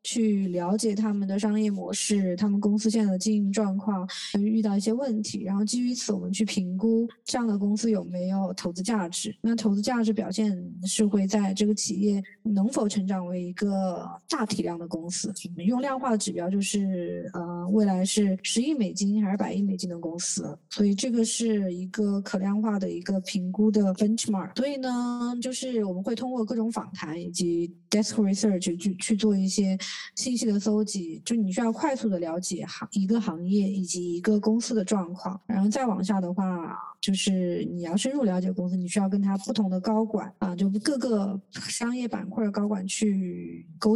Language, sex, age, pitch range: Chinese, female, 20-39, 190-225 Hz